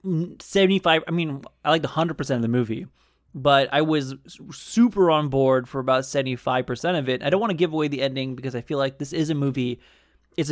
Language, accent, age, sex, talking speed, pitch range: English, American, 20-39, male, 210 wpm, 130-175 Hz